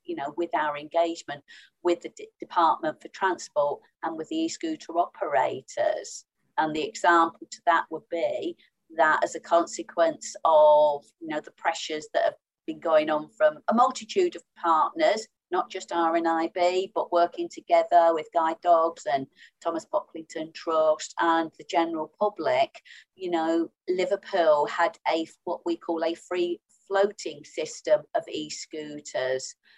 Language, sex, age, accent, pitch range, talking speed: English, female, 40-59, British, 160-260 Hz, 145 wpm